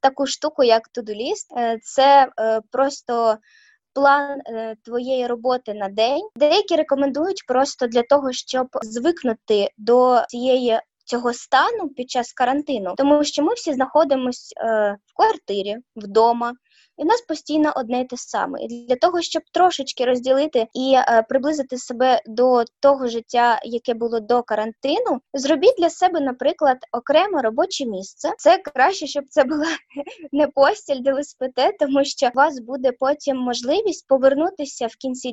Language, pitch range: Ukrainian, 240-305 Hz